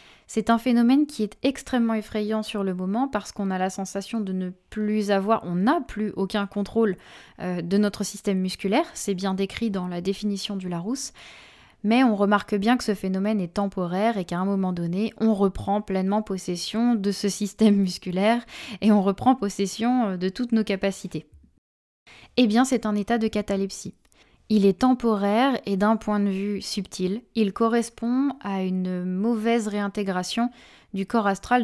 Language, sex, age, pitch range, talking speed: French, female, 20-39, 190-225 Hz, 175 wpm